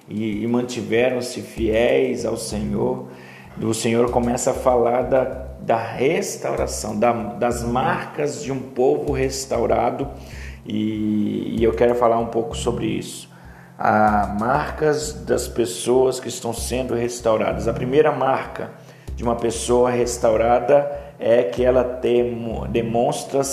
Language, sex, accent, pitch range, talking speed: Portuguese, male, Brazilian, 115-135 Hz, 120 wpm